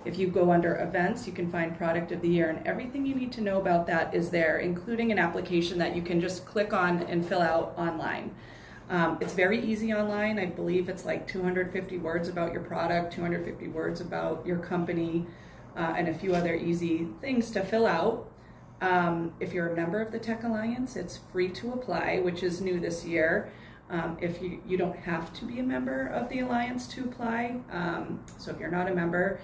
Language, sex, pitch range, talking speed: English, female, 165-195 Hz, 210 wpm